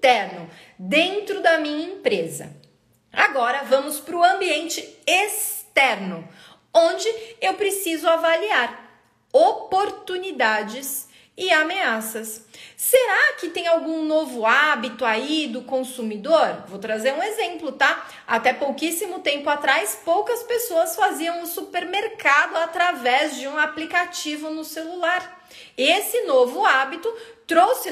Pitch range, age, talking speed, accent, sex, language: 275-360 Hz, 30-49, 105 wpm, Brazilian, female, Portuguese